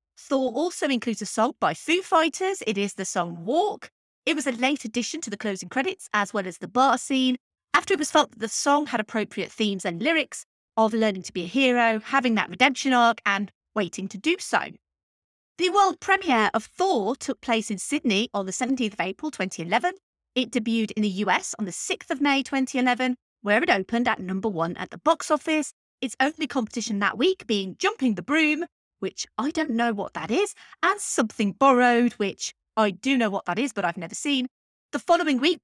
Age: 30-49